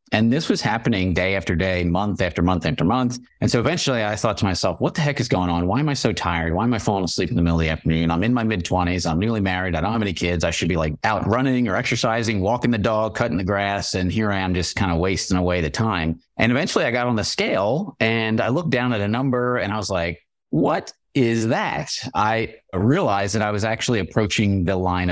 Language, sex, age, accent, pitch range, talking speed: English, male, 30-49, American, 90-110 Hz, 260 wpm